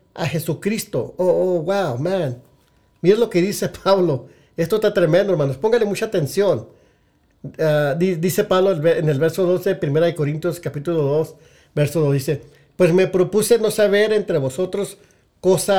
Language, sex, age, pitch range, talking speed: English, male, 50-69, 140-185 Hz, 160 wpm